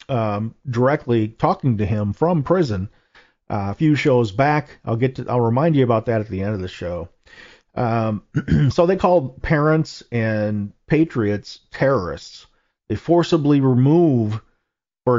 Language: English